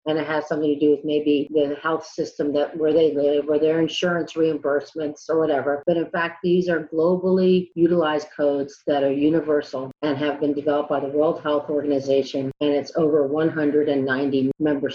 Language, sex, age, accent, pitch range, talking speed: English, female, 40-59, American, 140-160 Hz, 185 wpm